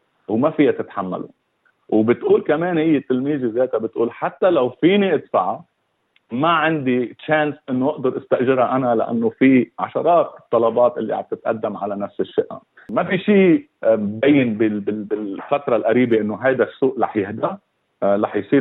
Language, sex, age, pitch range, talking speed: Arabic, male, 40-59, 110-140 Hz, 135 wpm